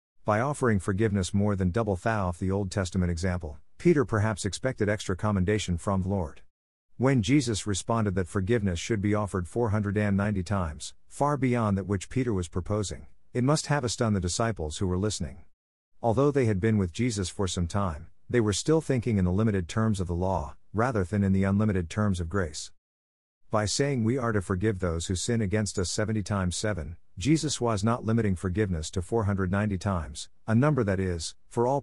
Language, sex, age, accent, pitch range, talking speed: English, male, 50-69, American, 90-115 Hz, 190 wpm